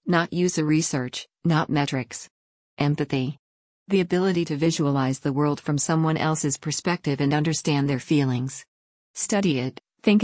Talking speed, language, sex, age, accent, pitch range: 135 wpm, English, female, 50-69, American, 140-170 Hz